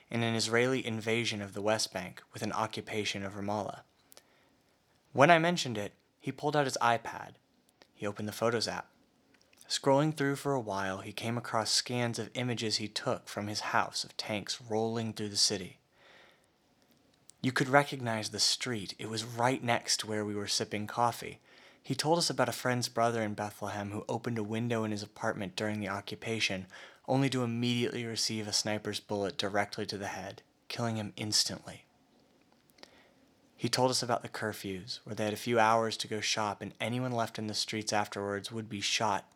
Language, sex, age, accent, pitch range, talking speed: English, male, 30-49, American, 105-125 Hz, 185 wpm